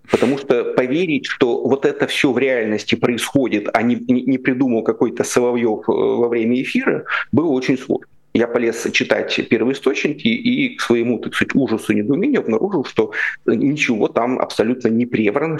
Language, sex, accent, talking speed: Russian, male, native, 160 wpm